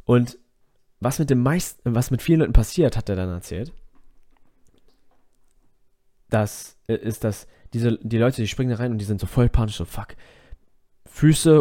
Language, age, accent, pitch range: German, 20-39, German, 105-140 Hz